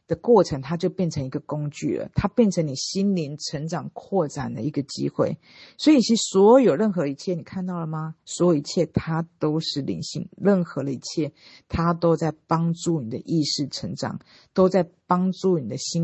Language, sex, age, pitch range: Chinese, female, 50-69, 145-180 Hz